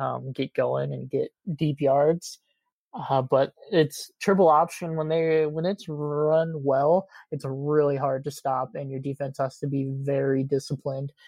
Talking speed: 165 wpm